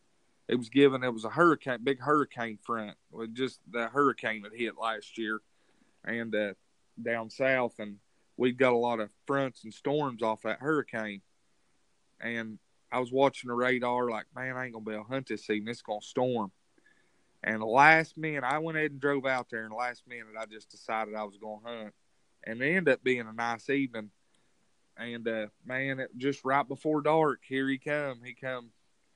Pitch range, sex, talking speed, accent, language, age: 115-140 Hz, male, 205 wpm, American, English, 30-49